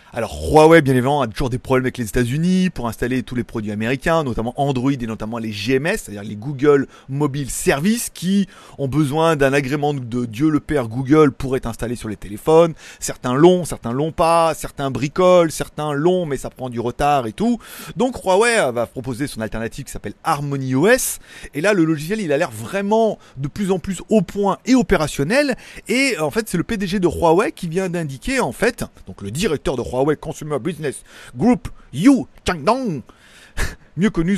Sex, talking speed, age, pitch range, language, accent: male, 195 wpm, 30-49, 130-185 Hz, French, French